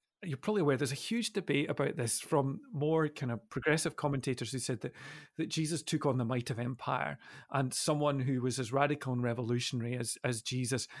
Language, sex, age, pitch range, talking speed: English, male, 40-59, 130-160 Hz, 200 wpm